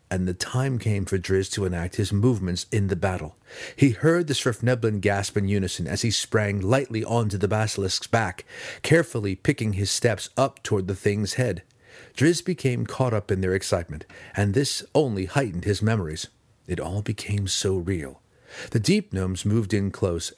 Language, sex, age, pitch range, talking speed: English, male, 40-59, 95-120 Hz, 180 wpm